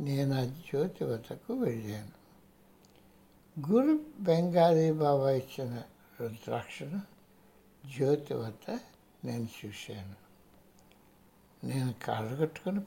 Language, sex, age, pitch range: Hindi, male, 60-79, 120-175 Hz